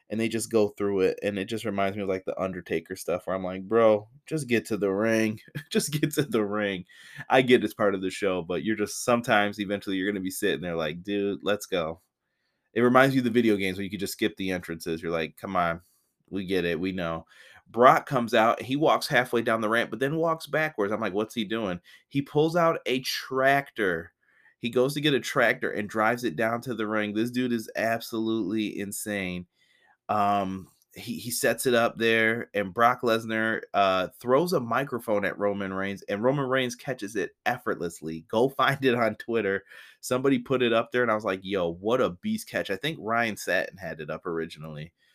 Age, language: 20-39, English